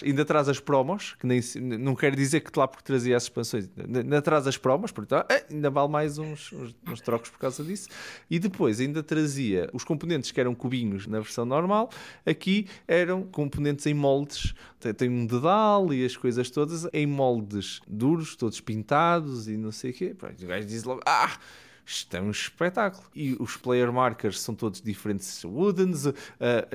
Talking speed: 175 wpm